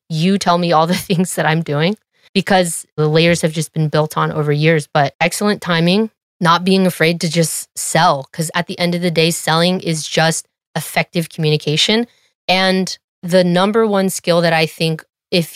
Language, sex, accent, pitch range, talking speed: English, female, American, 160-185 Hz, 190 wpm